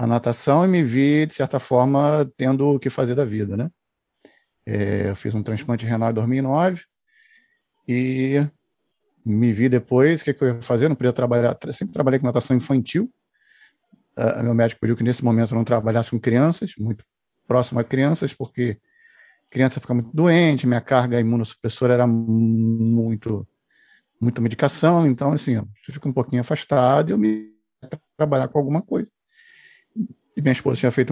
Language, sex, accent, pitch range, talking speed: Portuguese, male, Brazilian, 115-170 Hz, 170 wpm